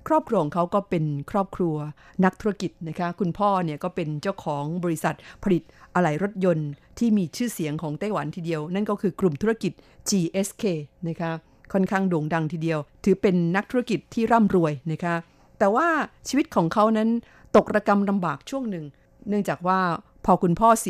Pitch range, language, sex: 165-205 Hz, Thai, female